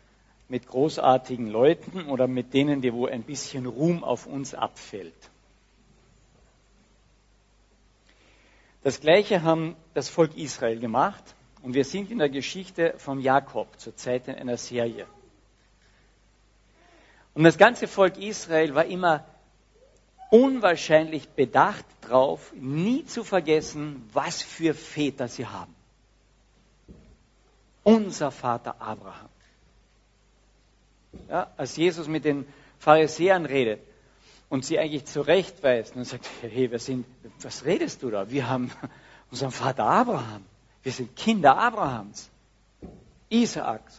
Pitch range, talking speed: 110-160 Hz, 115 wpm